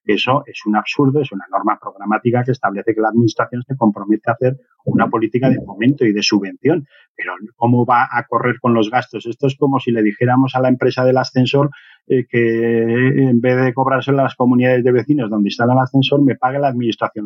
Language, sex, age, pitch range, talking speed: Spanish, male, 40-59, 115-135 Hz, 215 wpm